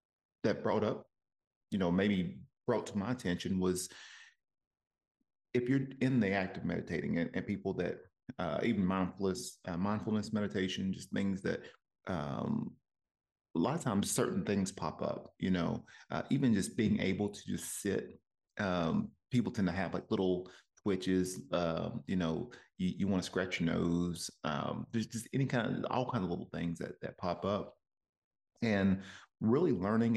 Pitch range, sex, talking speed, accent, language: 95-110 Hz, male, 170 wpm, American, English